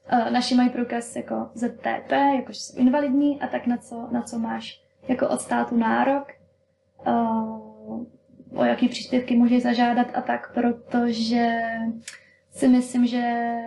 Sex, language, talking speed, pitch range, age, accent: female, Czech, 135 wpm, 230-245 Hz, 20-39, native